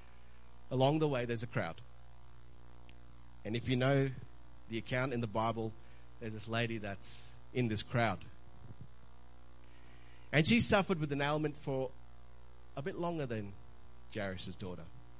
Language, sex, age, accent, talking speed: English, male, 30-49, Australian, 140 wpm